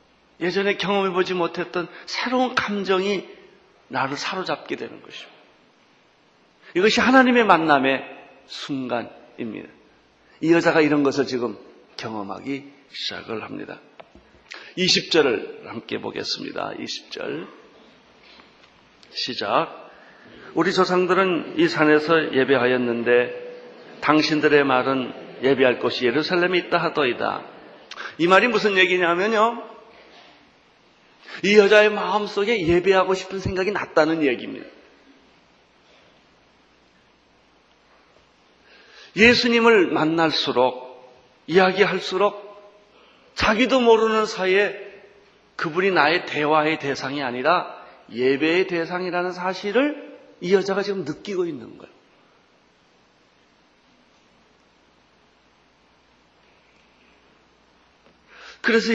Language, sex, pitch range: Korean, male, 150-205 Hz